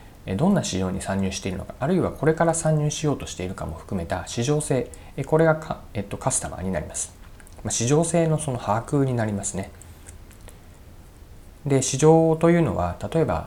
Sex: male